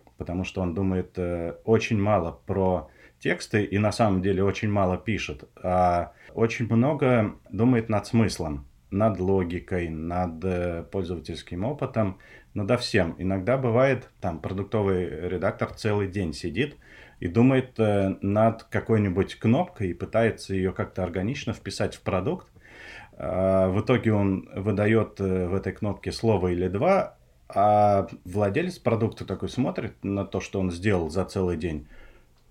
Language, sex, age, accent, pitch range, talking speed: Russian, male, 30-49, native, 90-110 Hz, 135 wpm